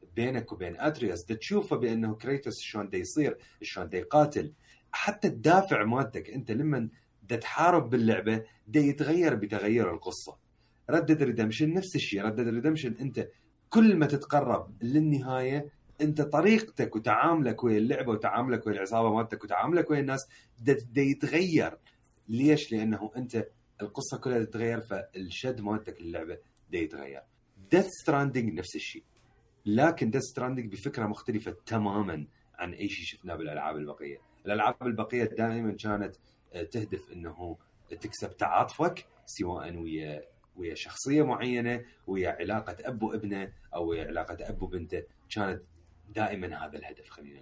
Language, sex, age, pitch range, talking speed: Arabic, male, 30-49, 105-135 Hz, 125 wpm